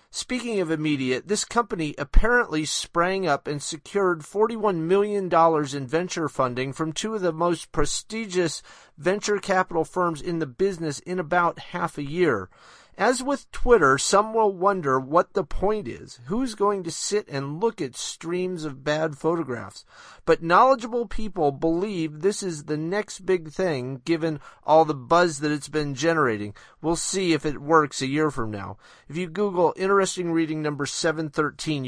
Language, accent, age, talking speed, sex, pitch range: English, American, 40-59, 165 wpm, male, 140-185 Hz